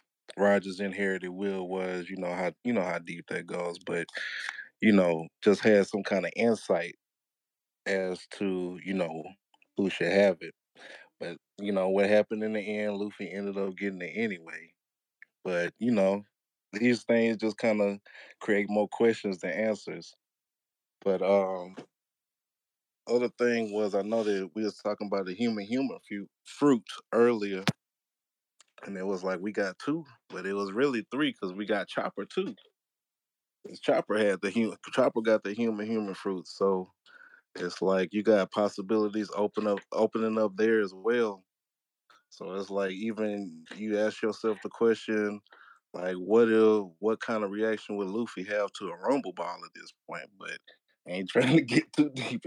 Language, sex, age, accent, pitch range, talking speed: English, male, 20-39, American, 95-110 Hz, 170 wpm